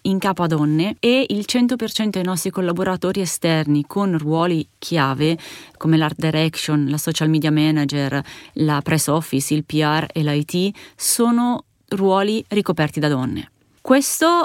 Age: 30-49